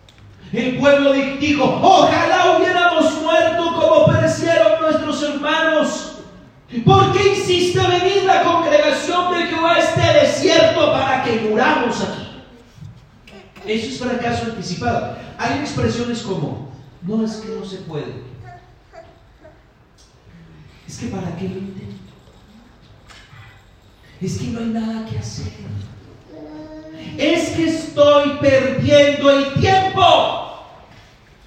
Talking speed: 110 wpm